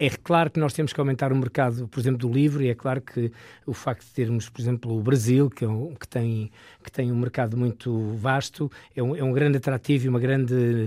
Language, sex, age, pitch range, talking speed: Portuguese, male, 20-39, 115-130 Hz, 220 wpm